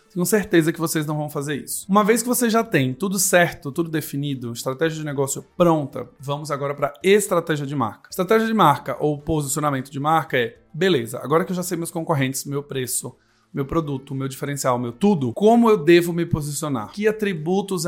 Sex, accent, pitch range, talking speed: male, Brazilian, 135-165 Hz, 200 wpm